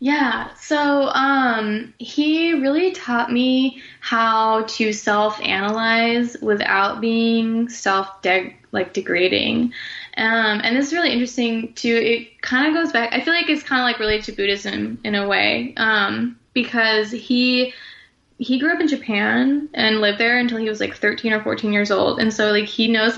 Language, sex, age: English, female, 10-29